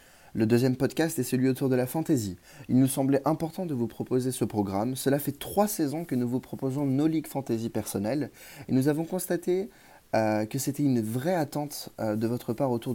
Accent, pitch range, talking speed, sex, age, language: French, 110-135 Hz, 210 wpm, male, 20-39, French